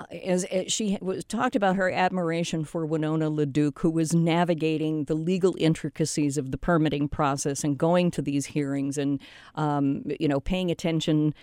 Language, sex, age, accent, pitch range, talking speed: English, female, 50-69, American, 160-215 Hz, 155 wpm